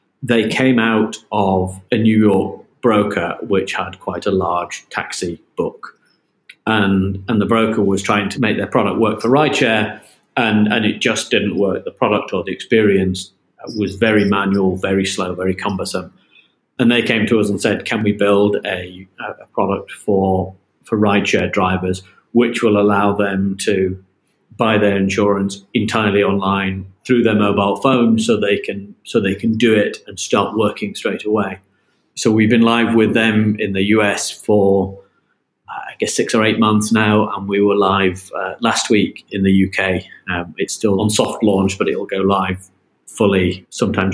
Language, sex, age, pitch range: English, male, 40-59, 95-110 Hz